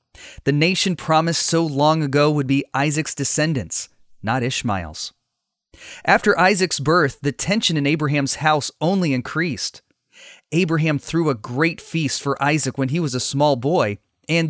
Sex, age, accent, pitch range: male, 30-49, American, 125-165 Hz